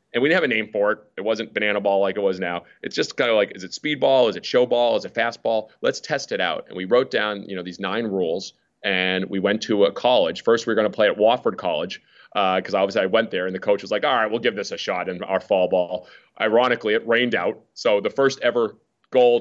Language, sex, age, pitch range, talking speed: English, male, 30-49, 95-115 Hz, 280 wpm